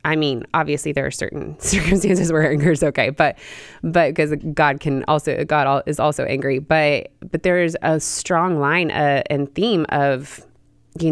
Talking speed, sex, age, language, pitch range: 180 wpm, female, 20-39, English, 135-165 Hz